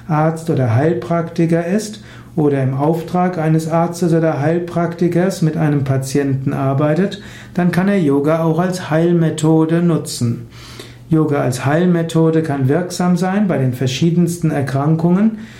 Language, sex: German, male